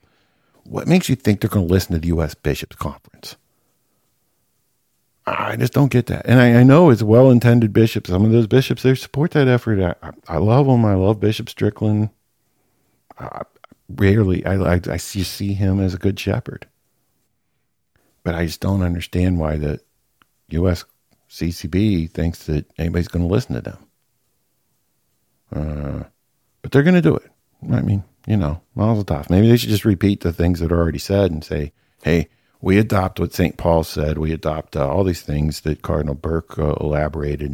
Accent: American